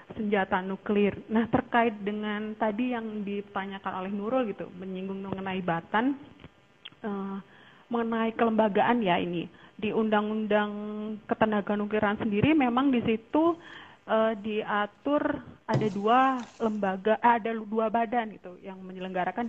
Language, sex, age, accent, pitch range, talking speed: Indonesian, female, 30-49, native, 195-235 Hz, 115 wpm